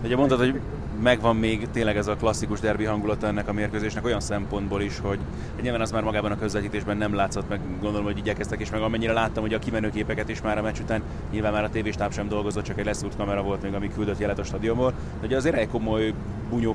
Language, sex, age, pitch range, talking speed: Hungarian, male, 20-39, 105-110 Hz, 230 wpm